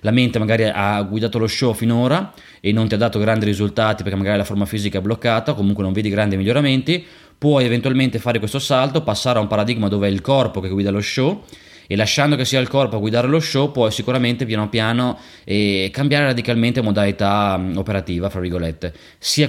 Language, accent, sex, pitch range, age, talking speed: Italian, native, male, 100-120 Hz, 20-39, 205 wpm